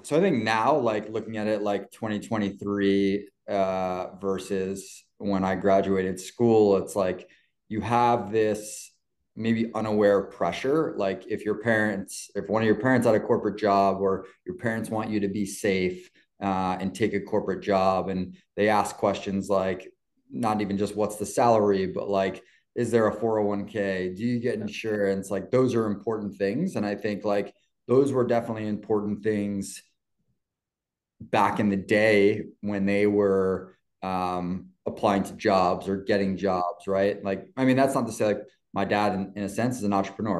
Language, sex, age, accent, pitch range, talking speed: English, male, 30-49, American, 95-110 Hz, 175 wpm